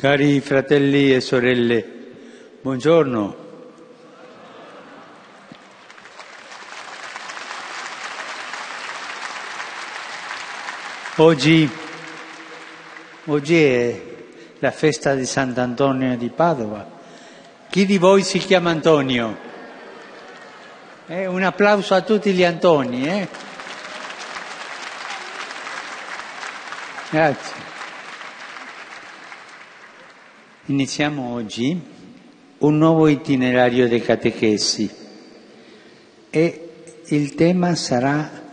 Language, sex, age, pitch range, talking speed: Italian, male, 60-79, 125-180 Hz, 60 wpm